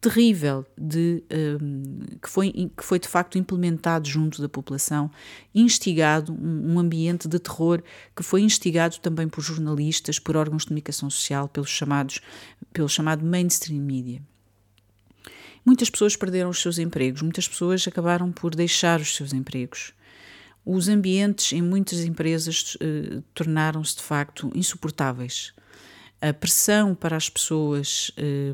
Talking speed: 120 wpm